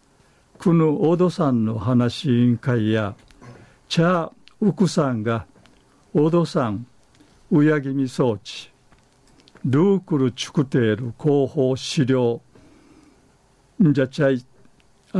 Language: Japanese